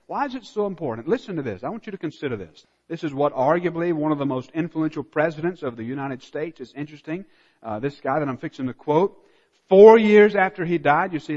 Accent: American